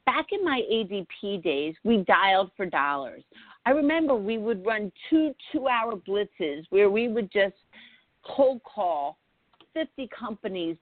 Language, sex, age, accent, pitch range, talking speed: English, female, 50-69, American, 195-255 Hz, 145 wpm